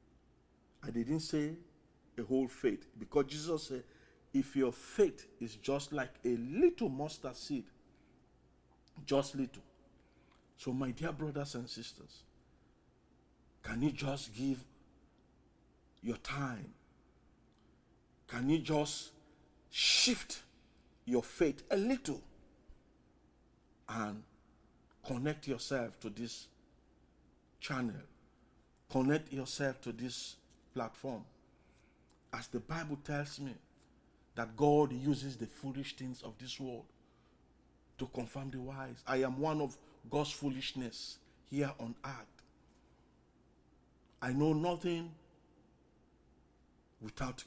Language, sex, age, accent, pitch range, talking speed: English, male, 50-69, Nigerian, 110-145 Hz, 105 wpm